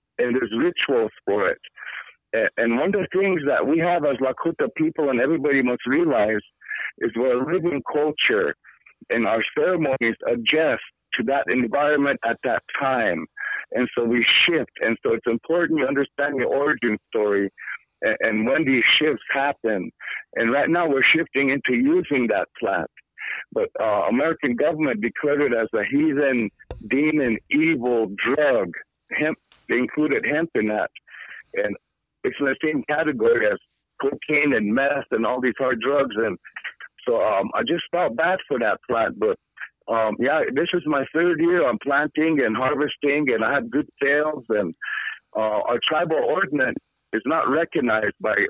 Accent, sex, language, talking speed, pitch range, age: American, male, English, 160 wpm, 130-175 Hz, 60-79